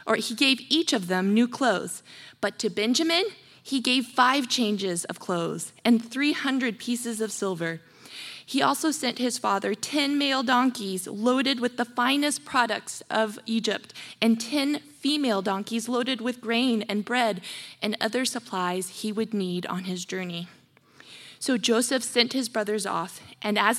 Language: English